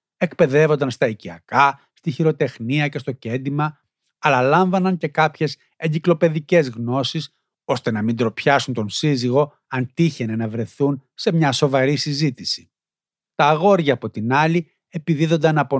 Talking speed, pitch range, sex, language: 135 wpm, 125-160 Hz, male, Greek